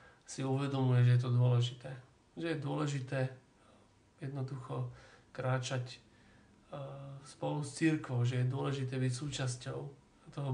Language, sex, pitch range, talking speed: Slovak, male, 125-140 Hz, 115 wpm